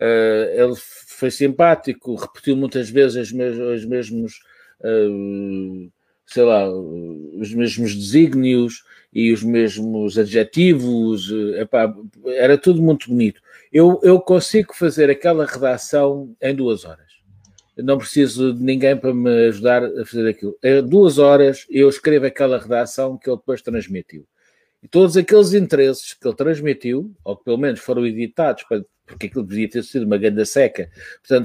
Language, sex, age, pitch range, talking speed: Portuguese, male, 50-69, 115-175 Hz, 140 wpm